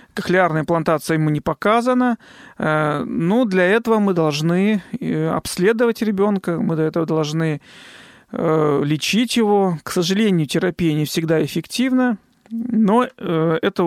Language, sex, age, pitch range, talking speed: Russian, male, 40-59, 160-205 Hz, 115 wpm